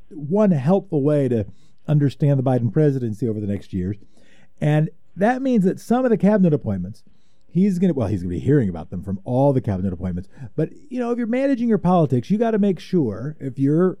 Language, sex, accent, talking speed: English, male, American, 225 wpm